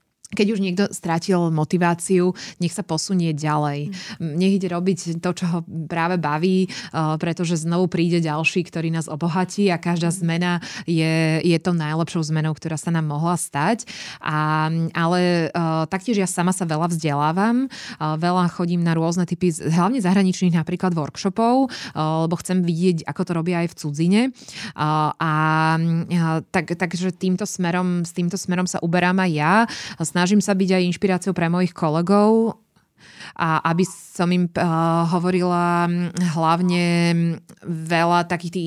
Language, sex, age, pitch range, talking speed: Slovak, female, 20-39, 165-185 Hz, 150 wpm